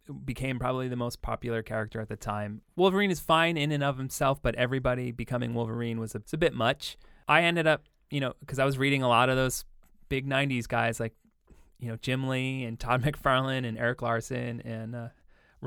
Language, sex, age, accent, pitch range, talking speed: English, male, 20-39, American, 110-135 Hz, 210 wpm